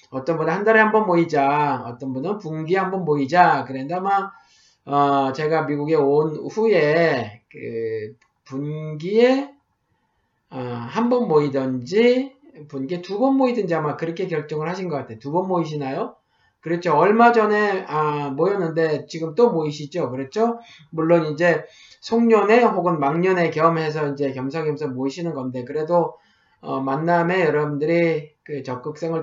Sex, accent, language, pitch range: male, native, Korean, 140-185 Hz